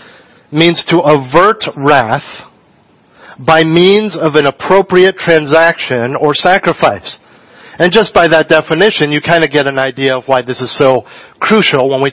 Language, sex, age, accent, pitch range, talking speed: English, male, 40-59, American, 140-185 Hz, 155 wpm